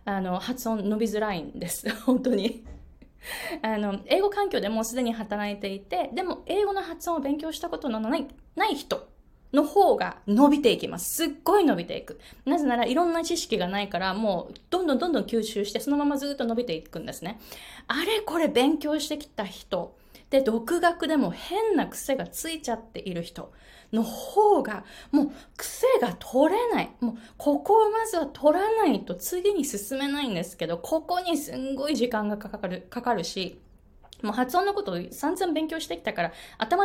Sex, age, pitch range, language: female, 20-39, 210-335 Hz, Japanese